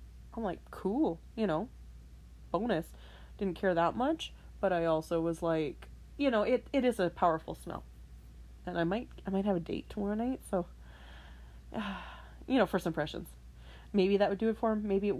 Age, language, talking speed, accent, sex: 30-49, English, 190 wpm, American, female